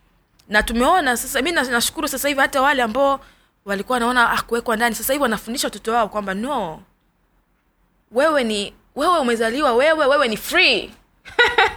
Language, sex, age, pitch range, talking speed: Swahili, female, 20-39, 220-280 Hz, 150 wpm